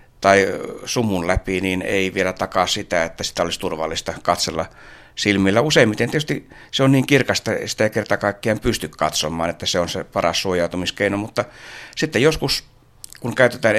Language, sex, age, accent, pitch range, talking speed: Finnish, male, 60-79, native, 95-115 Hz, 160 wpm